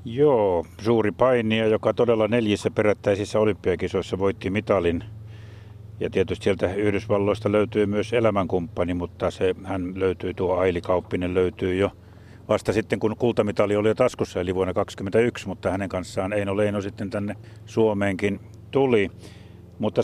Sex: male